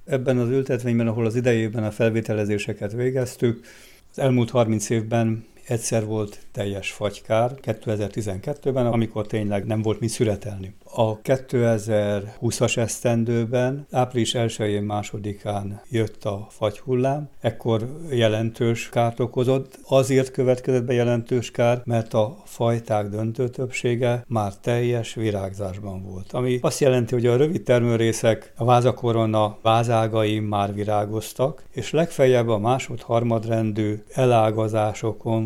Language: Hungarian